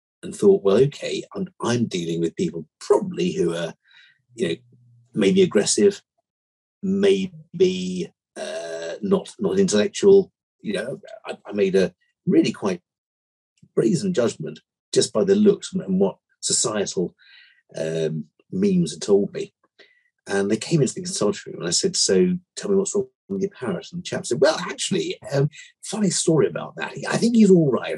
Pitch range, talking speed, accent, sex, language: 135-200 Hz, 165 wpm, British, male, English